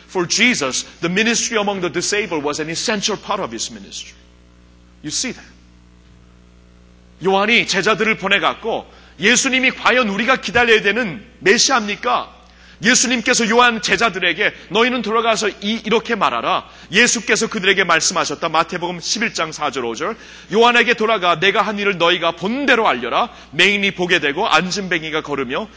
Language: Korean